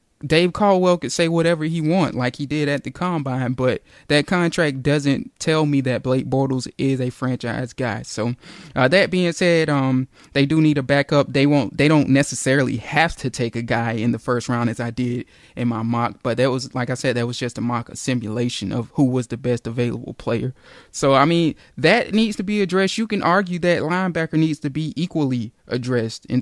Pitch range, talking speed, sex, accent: 125-145 Hz, 220 wpm, male, American